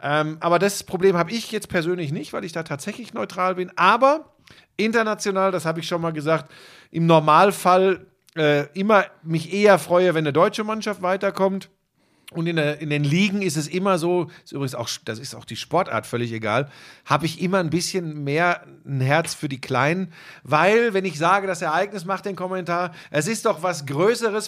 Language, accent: German, German